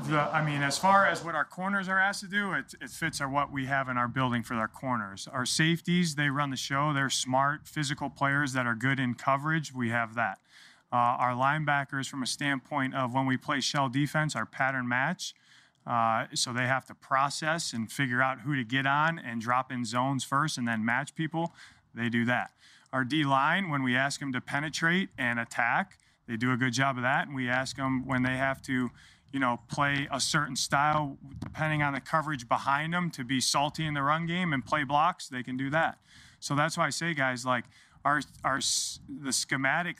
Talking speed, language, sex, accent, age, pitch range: 215 wpm, English, male, American, 30-49, 125-150 Hz